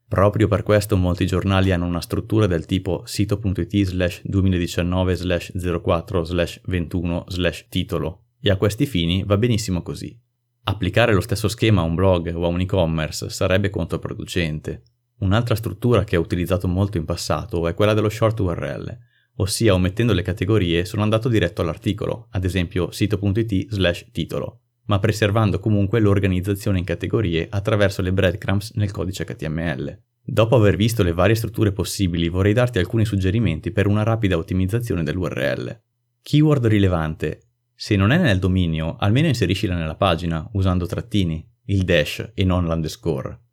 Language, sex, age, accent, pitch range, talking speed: Italian, male, 30-49, native, 90-110 Hz, 155 wpm